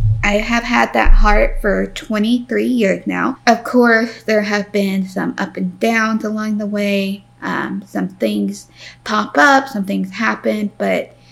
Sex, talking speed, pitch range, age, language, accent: female, 160 wpm, 185-225 Hz, 20-39, English, American